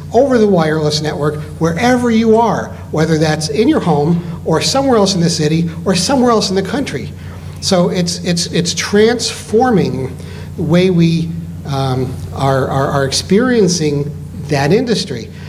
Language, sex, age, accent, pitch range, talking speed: English, male, 60-79, American, 145-195 Hz, 150 wpm